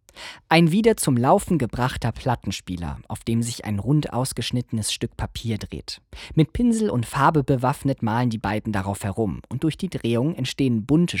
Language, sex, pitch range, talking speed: German, male, 100-145 Hz, 165 wpm